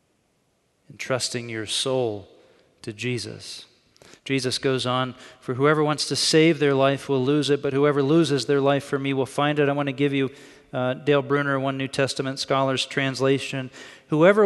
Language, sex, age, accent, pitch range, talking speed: English, male, 40-59, American, 135-185 Hz, 180 wpm